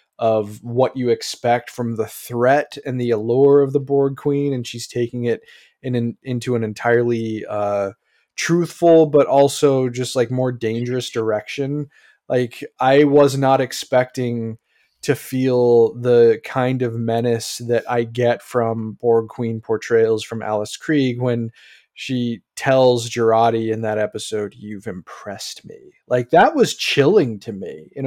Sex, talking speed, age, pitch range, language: male, 150 wpm, 20-39, 115-135 Hz, English